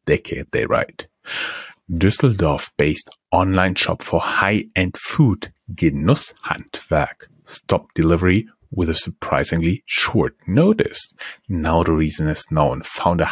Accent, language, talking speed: German, English, 115 wpm